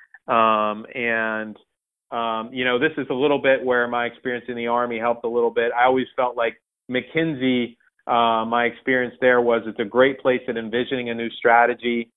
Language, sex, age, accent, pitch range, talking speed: English, male, 30-49, American, 110-125 Hz, 190 wpm